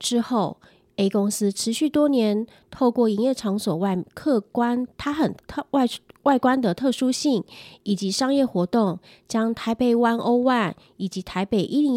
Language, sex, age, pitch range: Chinese, female, 30-49, 195-255 Hz